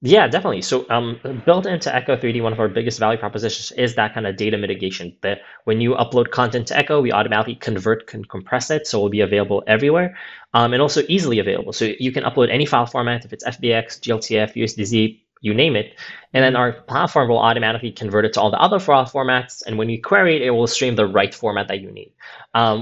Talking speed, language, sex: 230 wpm, English, male